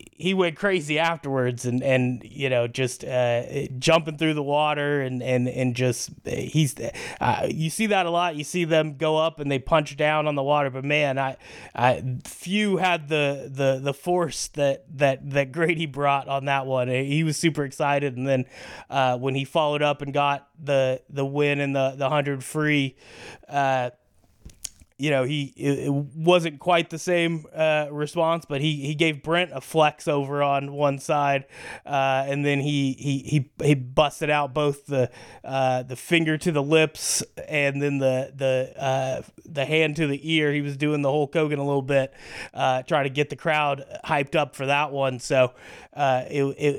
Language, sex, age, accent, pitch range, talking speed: English, male, 20-39, American, 135-155 Hz, 190 wpm